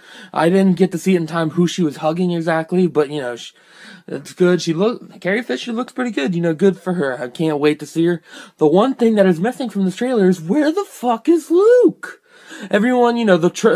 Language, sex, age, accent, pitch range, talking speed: English, male, 20-39, American, 150-190 Hz, 245 wpm